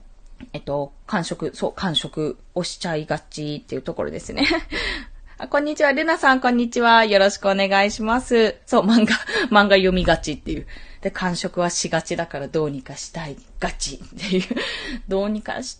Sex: female